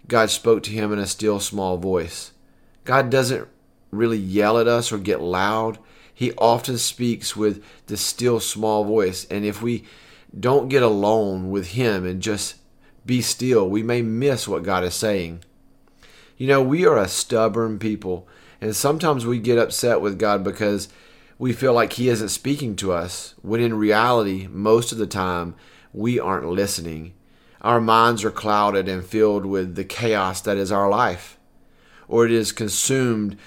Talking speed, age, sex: 170 wpm, 40-59, male